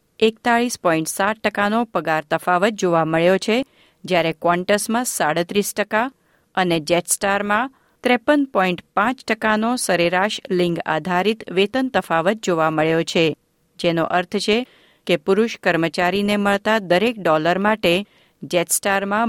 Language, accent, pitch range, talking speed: Gujarati, native, 170-225 Hz, 115 wpm